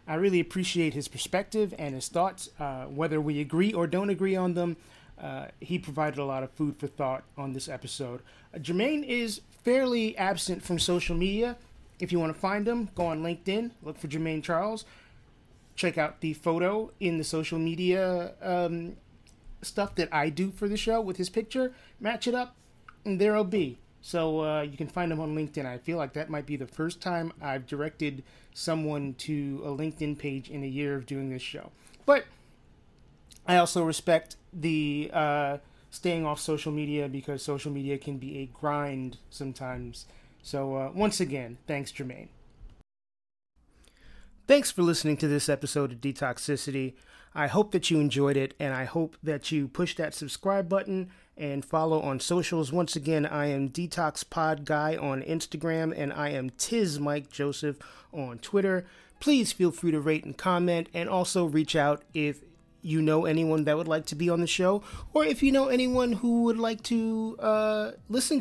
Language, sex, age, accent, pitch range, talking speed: English, male, 30-49, American, 145-185 Hz, 180 wpm